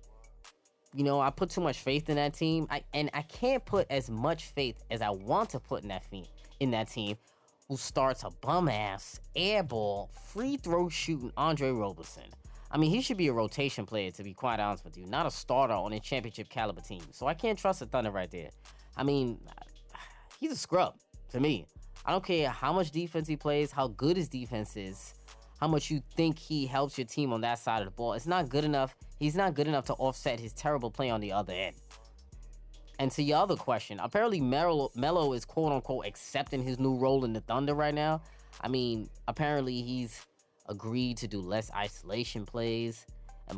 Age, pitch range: 20-39, 110-150 Hz